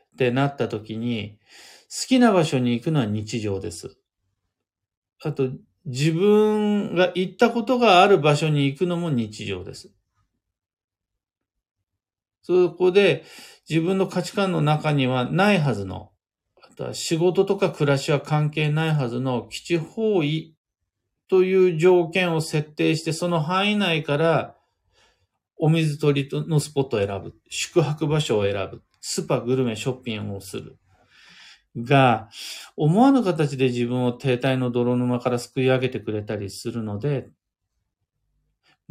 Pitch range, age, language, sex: 105-165 Hz, 40-59, Japanese, male